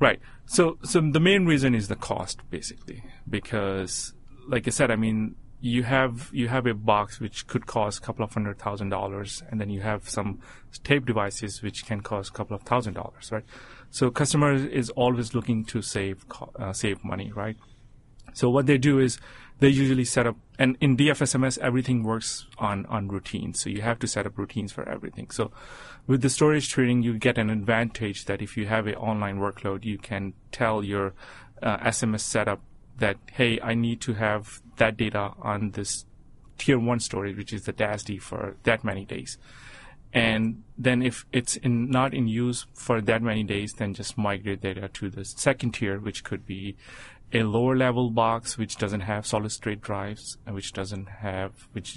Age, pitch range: 30-49, 105-125 Hz